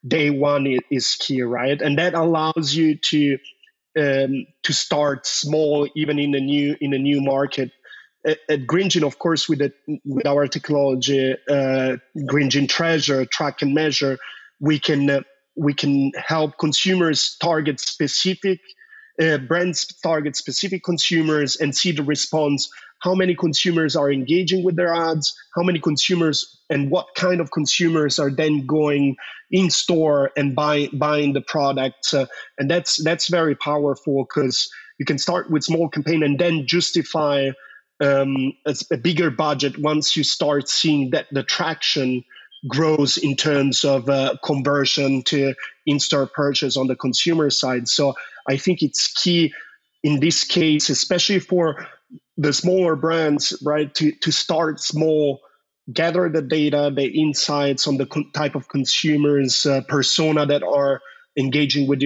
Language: English